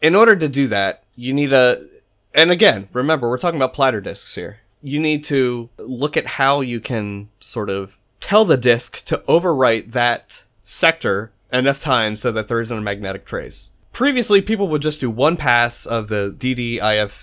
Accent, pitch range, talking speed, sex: American, 100-130 Hz, 185 wpm, male